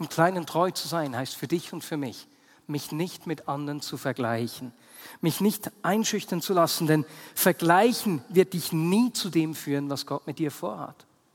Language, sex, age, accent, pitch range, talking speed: German, male, 50-69, German, 155-215 Hz, 185 wpm